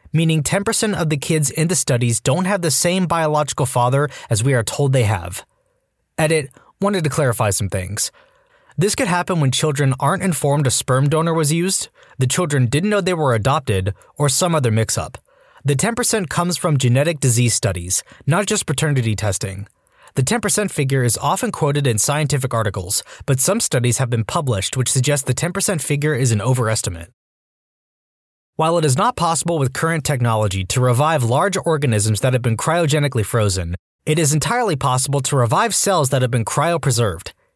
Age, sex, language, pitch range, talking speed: 20-39, male, English, 125-165 Hz, 175 wpm